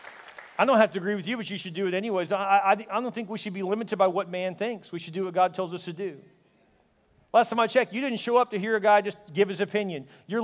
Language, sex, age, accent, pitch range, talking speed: English, male, 40-59, American, 145-200 Hz, 300 wpm